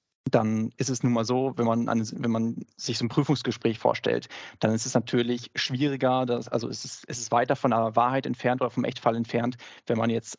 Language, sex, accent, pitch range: German, male, German, 115-130 Hz